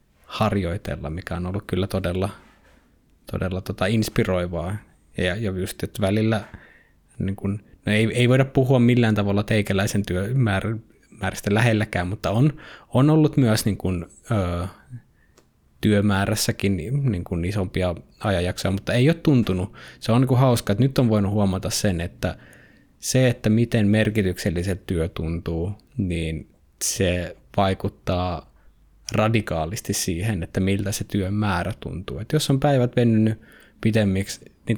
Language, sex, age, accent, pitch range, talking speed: Finnish, male, 20-39, native, 95-115 Hz, 130 wpm